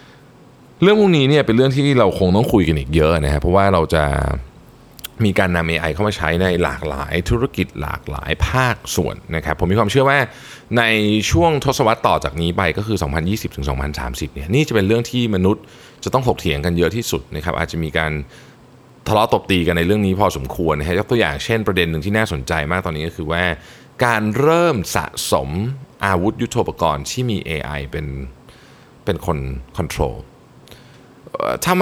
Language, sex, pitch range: Thai, male, 80-115 Hz